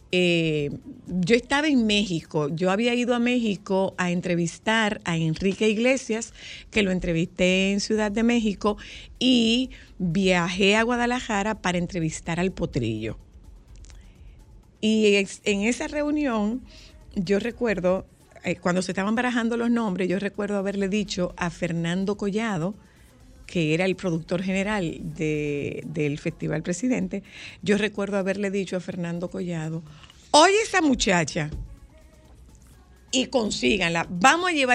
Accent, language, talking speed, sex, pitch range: American, Spanish, 130 wpm, female, 170-225 Hz